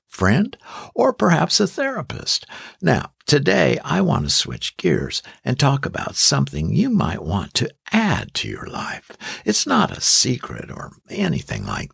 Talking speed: 155 wpm